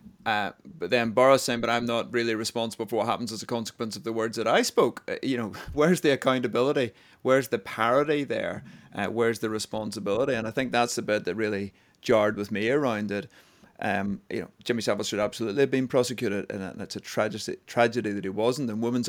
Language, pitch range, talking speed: English, 110-130 Hz, 215 wpm